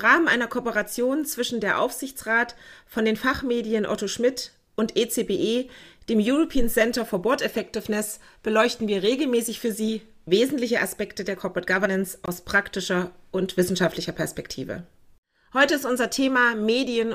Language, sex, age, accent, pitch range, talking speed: German, female, 40-59, German, 205-245 Hz, 140 wpm